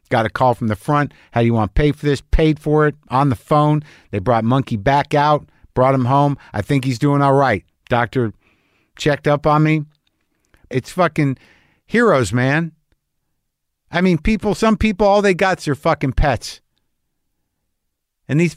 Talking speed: 185 wpm